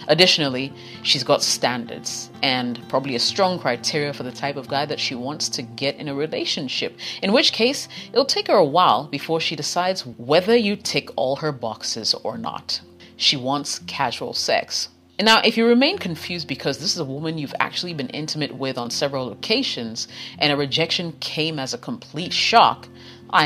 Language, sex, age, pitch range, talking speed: English, female, 30-49, 125-175 Hz, 185 wpm